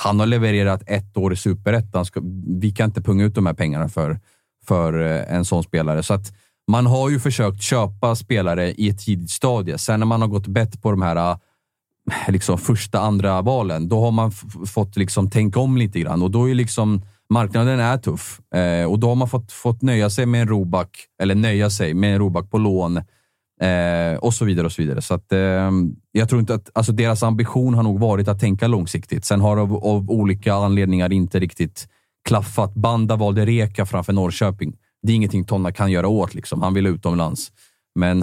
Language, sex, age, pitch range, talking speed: Swedish, male, 30-49, 90-115 Hz, 210 wpm